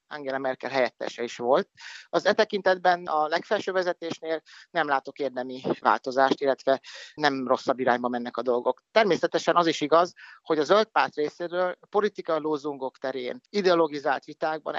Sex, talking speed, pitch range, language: male, 145 wpm, 135-170 Hz, Hungarian